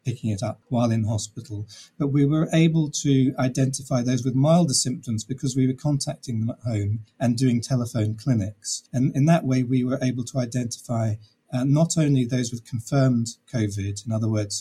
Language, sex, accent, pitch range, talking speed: English, male, British, 115-135 Hz, 190 wpm